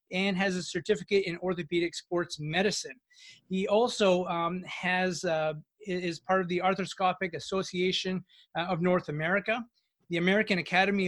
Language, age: English, 30-49